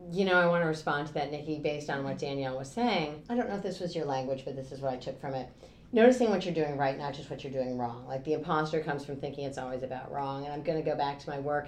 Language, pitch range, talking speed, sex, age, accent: English, 140-180 Hz, 315 wpm, female, 30-49, American